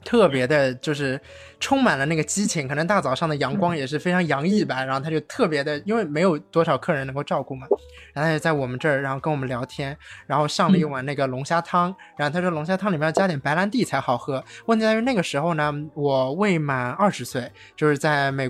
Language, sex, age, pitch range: Chinese, male, 20-39, 150-215 Hz